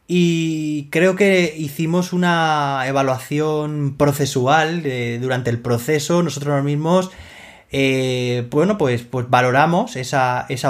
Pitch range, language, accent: 130-165 Hz, Spanish, Spanish